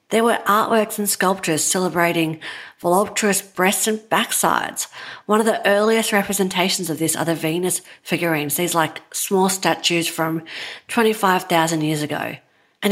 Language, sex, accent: English, female, Australian